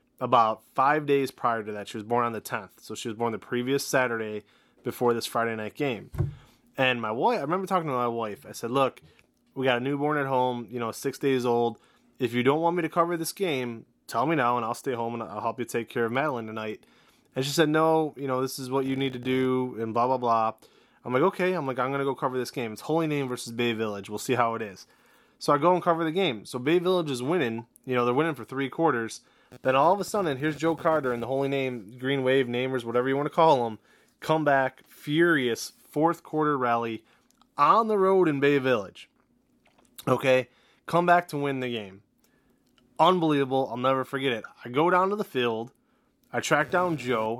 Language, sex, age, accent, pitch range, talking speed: English, male, 20-39, American, 120-150 Hz, 235 wpm